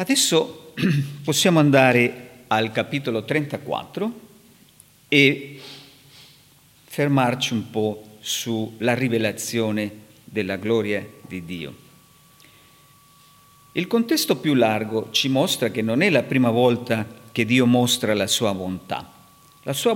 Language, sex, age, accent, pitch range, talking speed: Italian, male, 50-69, native, 110-145 Hz, 110 wpm